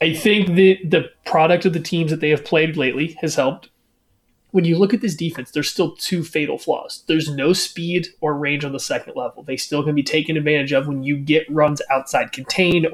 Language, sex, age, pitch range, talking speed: English, male, 20-39, 135-165 Hz, 225 wpm